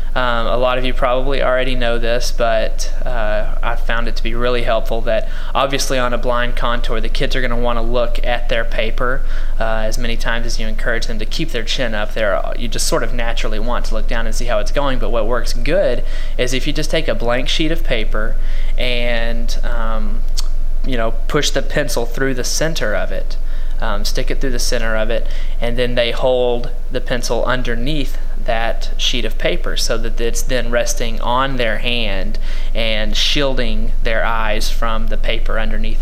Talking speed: 205 wpm